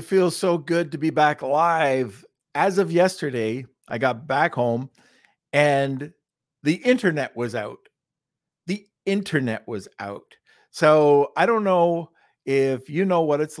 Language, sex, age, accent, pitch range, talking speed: English, male, 50-69, American, 125-165 Hz, 145 wpm